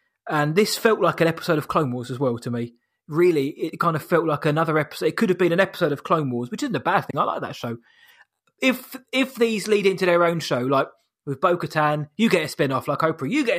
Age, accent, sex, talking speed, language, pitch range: 20-39, British, male, 260 wpm, English, 145-190 Hz